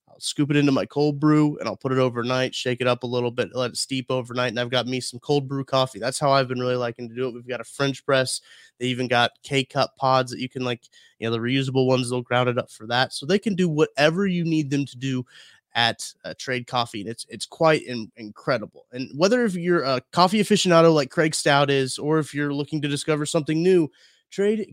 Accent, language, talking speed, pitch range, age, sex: American, English, 255 wpm, 125-150 Hz, 20-39, male